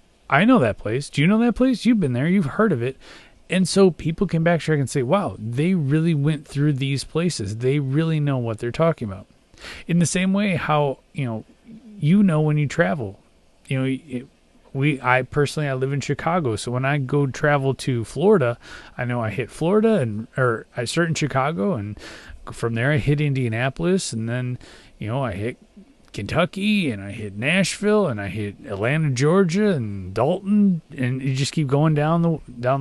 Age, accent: 30-49, American